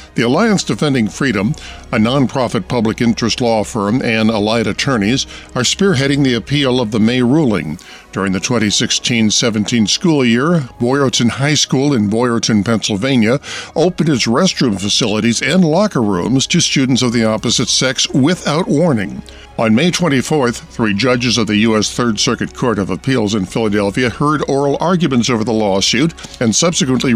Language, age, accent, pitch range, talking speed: English, 50-69, American, 110-145 Hz, 155 wpm